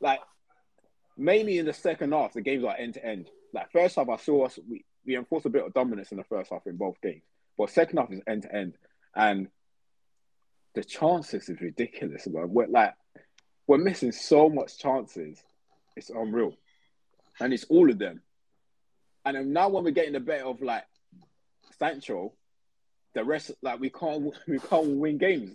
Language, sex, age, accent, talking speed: English, male, 20-39, British, 170 wpm